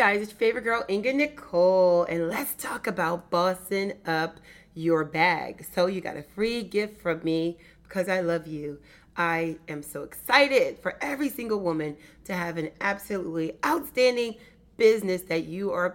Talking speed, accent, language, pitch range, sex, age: 165 wpm, American, English, 160-205 Hz, female, 30-49